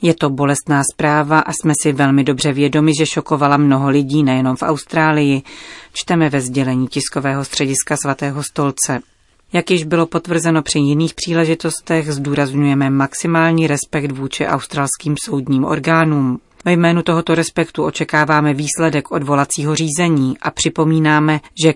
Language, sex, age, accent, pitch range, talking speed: Czech, female, 30-49, native, 140-160 Hz, 135 wpm